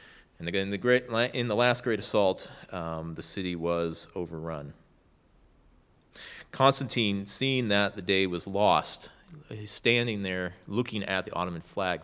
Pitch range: 85-115 Hz